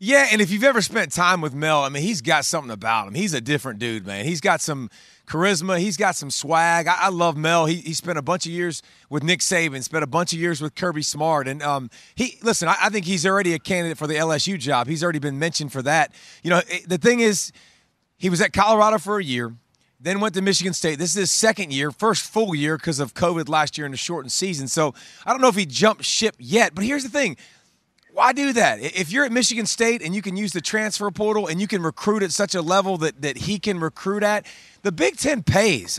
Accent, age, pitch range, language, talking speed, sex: American, 30-49, 160-210 Hz, English, 250 wpm, male